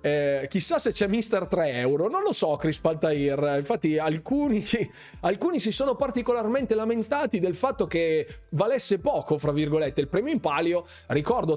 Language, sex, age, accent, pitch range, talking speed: Italian, male, 30-49, native, 150-225 Hz, 160 wpm